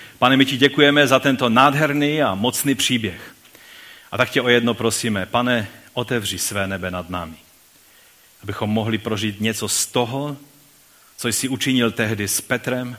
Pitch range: 110-145 Hz